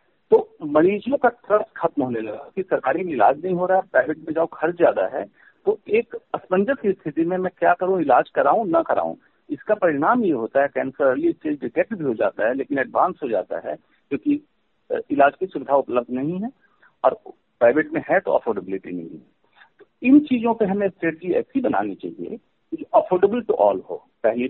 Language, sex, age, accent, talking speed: Hindi, male, 50-69, native, 190 wpm